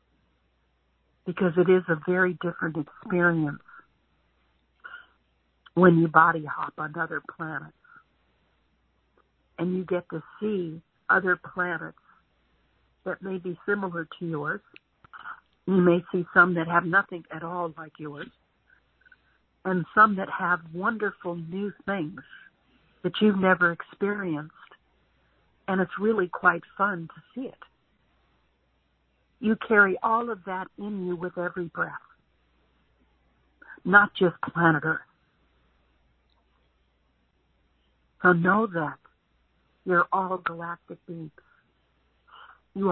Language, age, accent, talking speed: English, 60-79, American, 110 wpm